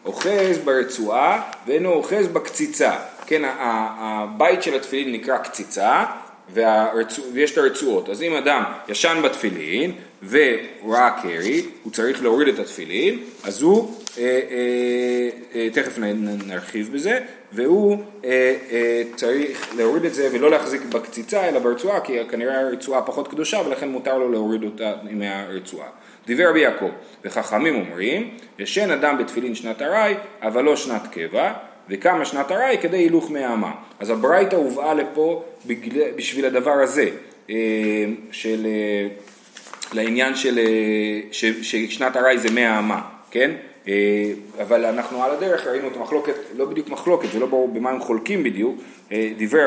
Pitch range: 110-150 Hz